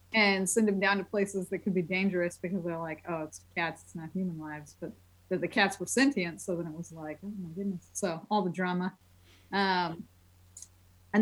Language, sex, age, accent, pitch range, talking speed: English, female, 30-49, American, 175-220 Hz, 215 wpm